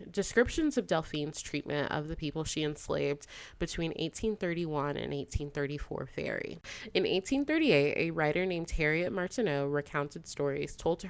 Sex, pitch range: female, 145-180 Hz